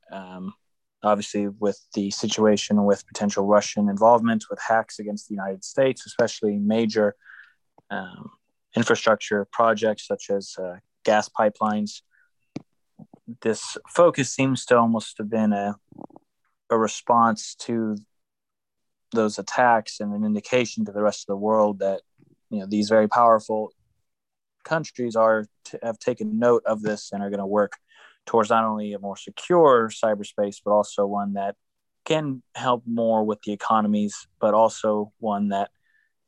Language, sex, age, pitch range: English, male, 20-39, 100-110 Hz